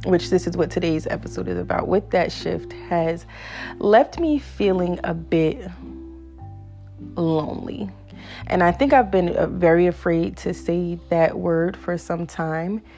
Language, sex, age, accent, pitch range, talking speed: English, female, 30-49, American, 150-195 Hz, 150 wpm